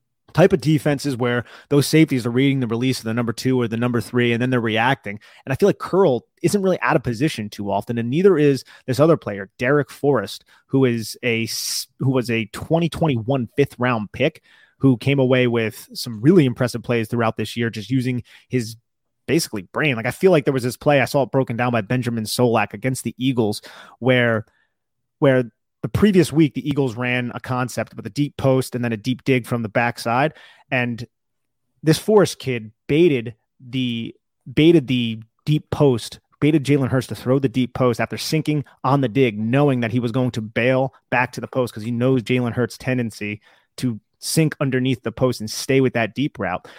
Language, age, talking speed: English, 30-49, 205 wpm